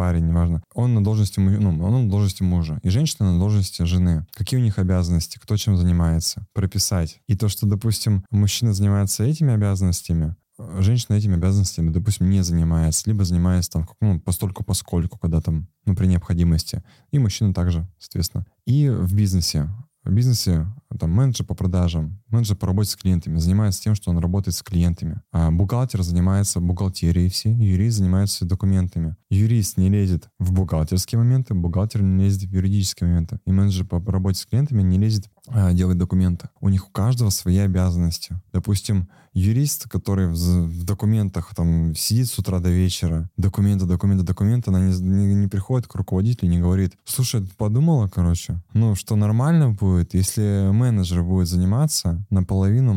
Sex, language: male, Russian